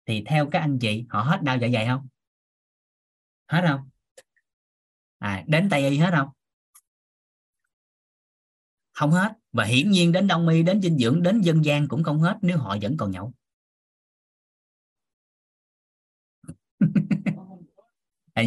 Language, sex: Vietnamese, male